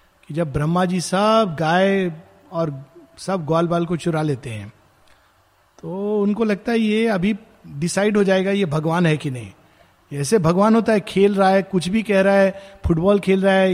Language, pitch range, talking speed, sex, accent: Hindi, 160-210 Hz, 190 wpm, male, native